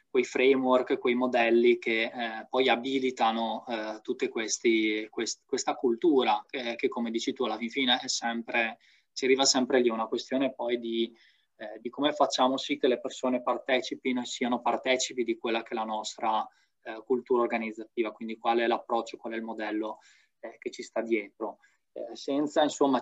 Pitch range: 115-130 Hz